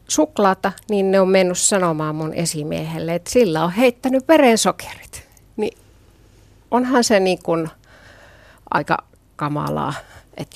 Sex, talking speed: female, 120 wpm